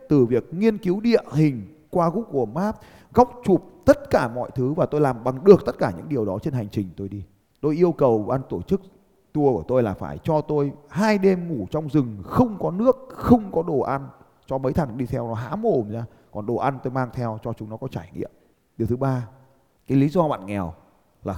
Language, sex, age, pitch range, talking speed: Vietnamese, male, 20-39, 115-165 Hz, 240 wpm